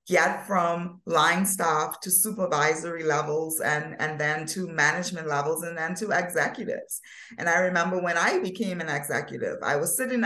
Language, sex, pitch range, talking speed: English, female, 155-200 Hz, 165 wpm